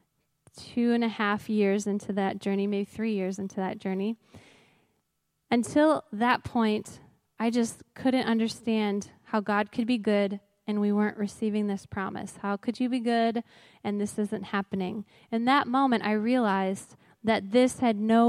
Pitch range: 205-240 Hz